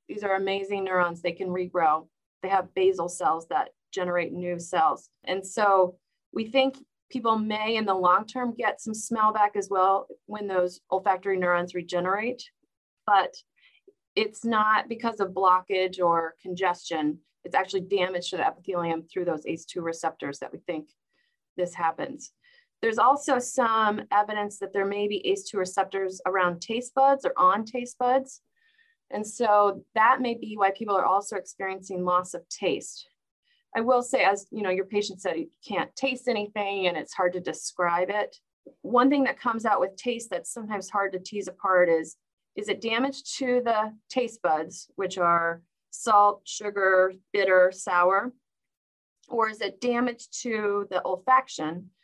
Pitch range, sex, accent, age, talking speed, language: 180-240 Hz, female, American, 30-49, 165 wpm, English